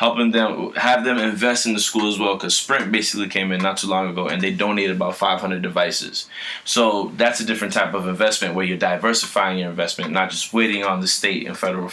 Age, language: 20-39, English